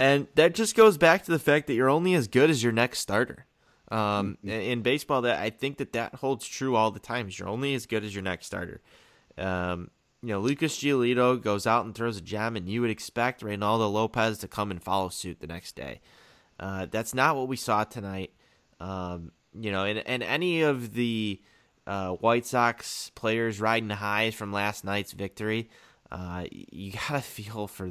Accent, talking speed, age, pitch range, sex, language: American, 205 wpm, 20-39, 95-120 Hz, male, English